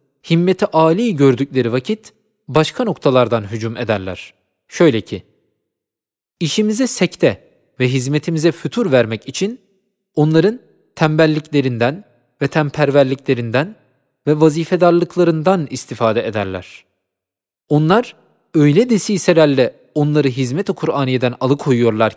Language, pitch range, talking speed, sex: Turkish, 125-180 Hz, 85 wpm, male